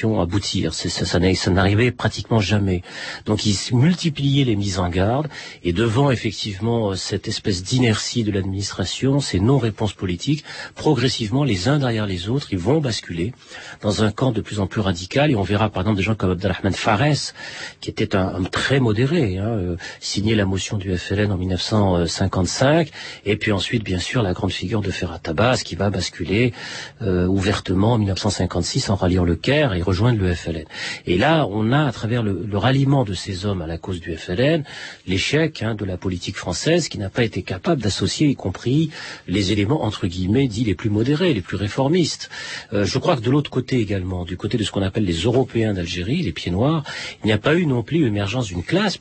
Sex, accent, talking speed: male, French, 205 wpm